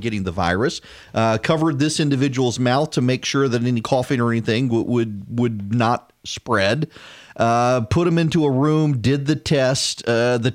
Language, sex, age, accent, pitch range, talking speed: English, male, 40-59, American, 115-140 Hz, 180 wpm